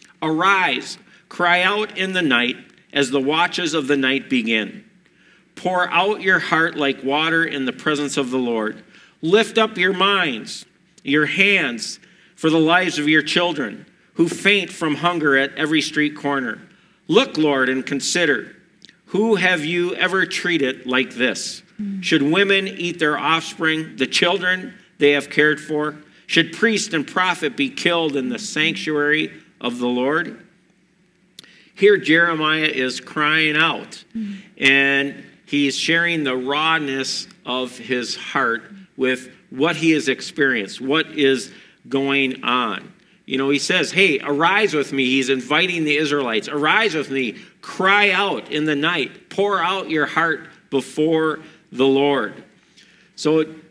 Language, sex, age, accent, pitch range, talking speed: English, male, 50-69, American, 145-185 Hz, 145 wpm